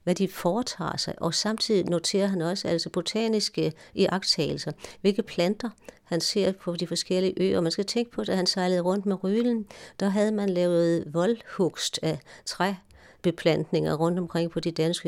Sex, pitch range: female, 165-195 Hz